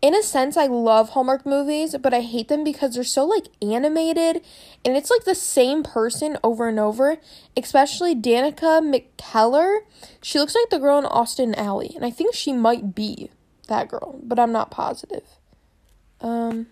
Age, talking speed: 10-29, 175 wpm